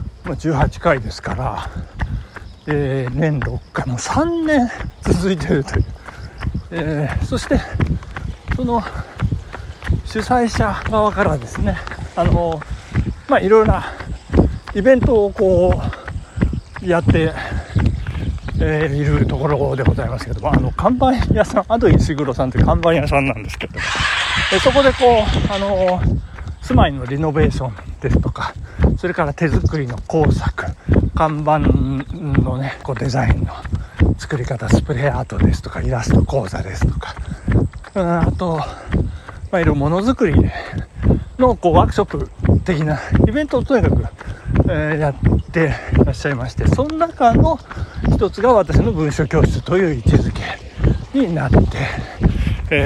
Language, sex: Japanese, male